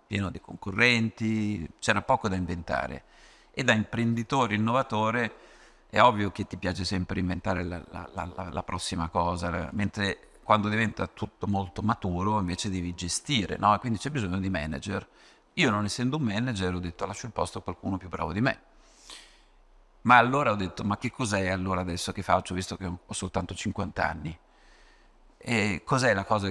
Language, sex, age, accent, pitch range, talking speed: Italian, male, 50-69, native, 90-110 Hz, 165 wpm